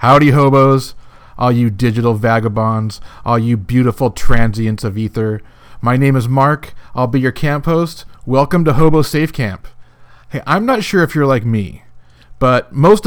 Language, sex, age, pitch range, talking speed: English, male, 40-59, 120-145 Hz, 165 wpm